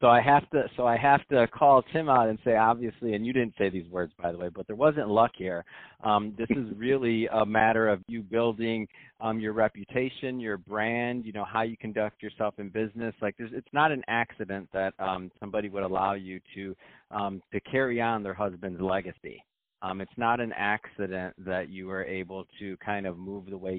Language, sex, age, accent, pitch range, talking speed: English, male, 30-49, American, 95-115 Hz, 210 wpm